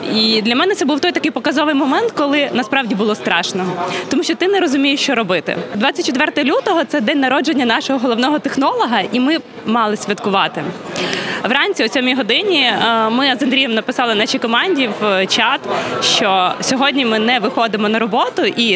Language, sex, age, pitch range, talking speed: Ukrainian, female, 20-39, 220-280 Hz, 170 wpm